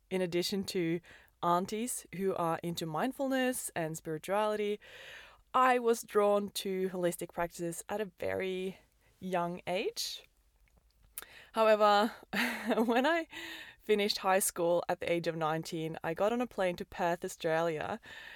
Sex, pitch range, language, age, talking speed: female, 170-215 Hz, English, 20-39, 130 wpm